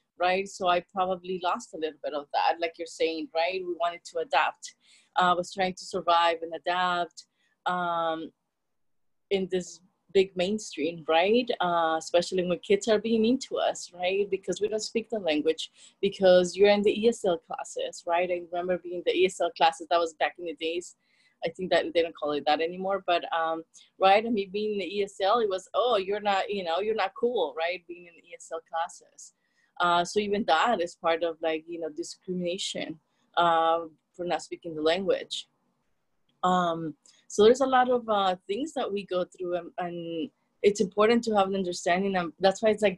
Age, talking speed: 30-49, 200 wpm